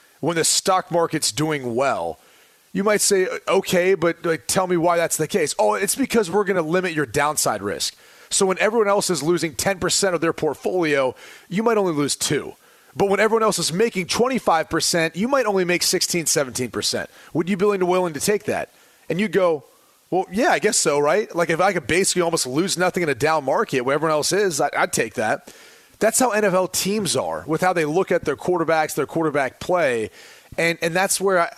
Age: 30-49